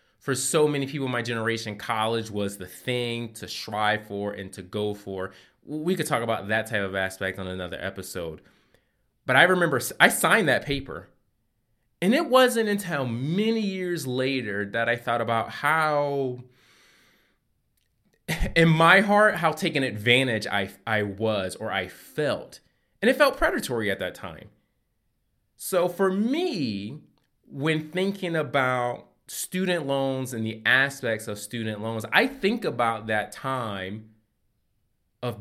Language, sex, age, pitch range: English, male, 20-39, 105-150 Hz